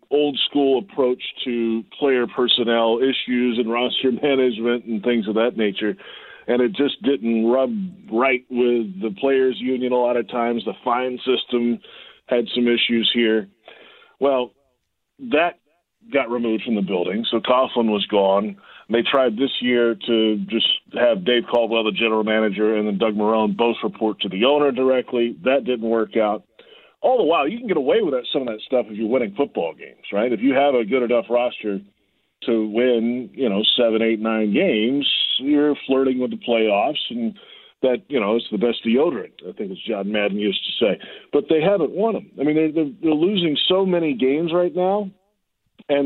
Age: 40-59